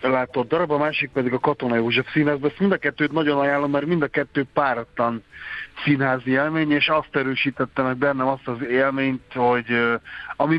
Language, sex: Hungarian, male